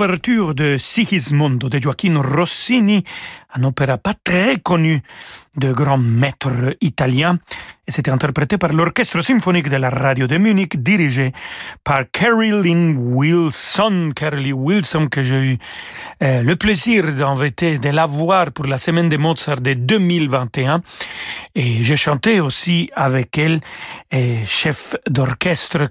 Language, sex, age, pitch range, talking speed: French, male, 40-59, 135-175 Hz, 130 wpm